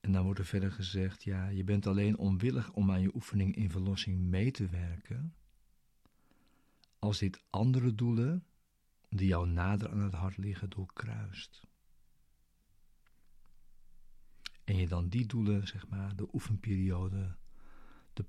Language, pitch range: Dutch, 95-110 Hz